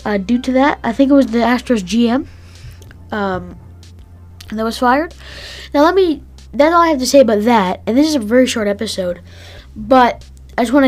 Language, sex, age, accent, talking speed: English, female, 20-39, American, 205 wpm